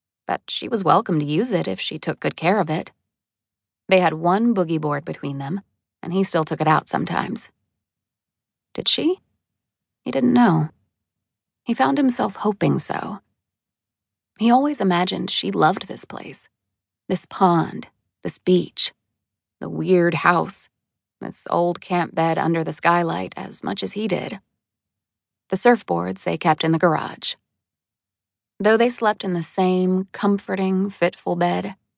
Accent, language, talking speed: American, English, 150 wpm